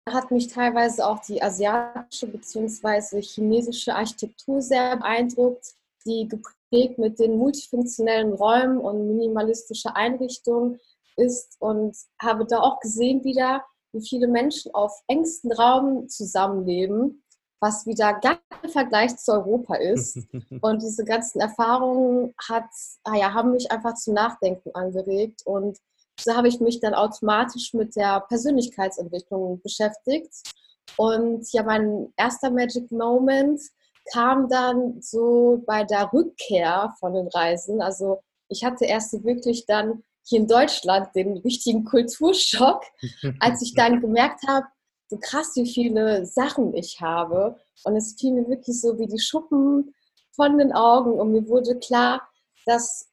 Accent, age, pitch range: German, 20-39, 215-250 Hz